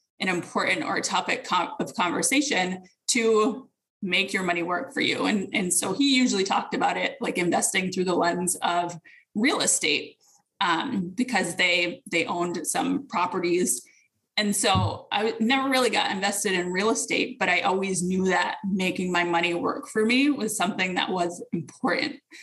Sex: female